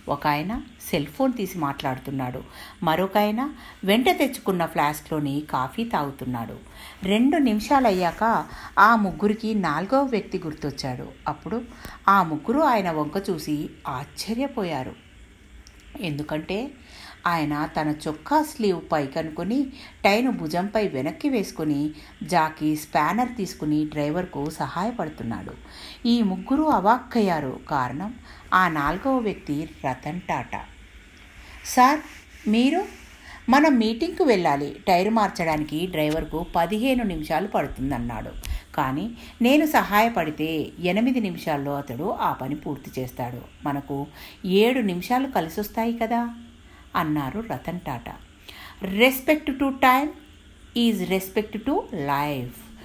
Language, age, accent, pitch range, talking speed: Telugu, 60-79, native, 150-235 Hz, 100 wpm